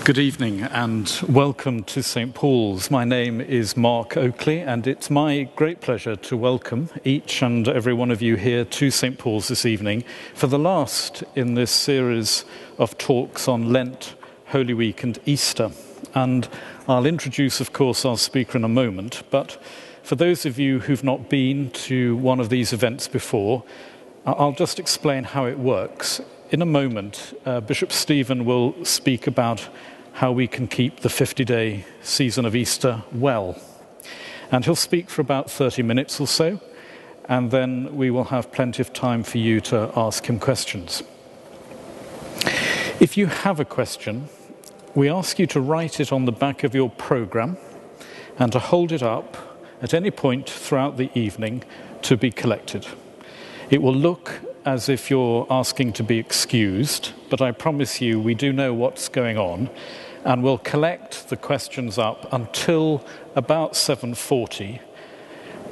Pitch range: 120-140 Hz